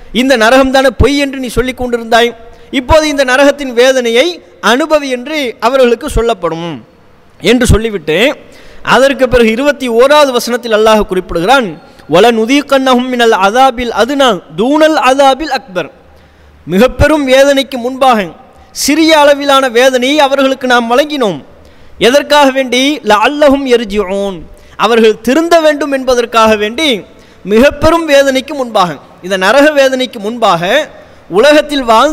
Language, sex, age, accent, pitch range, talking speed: English, male, 20-39, Indian, 230-285 Hz, 145 wpm